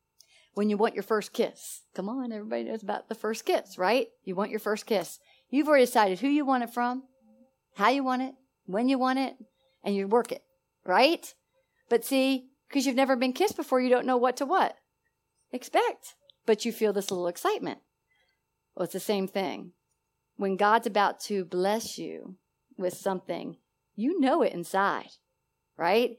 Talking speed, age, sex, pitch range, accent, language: 185 wpm, 40-59, female, 190-245 Hz, American, English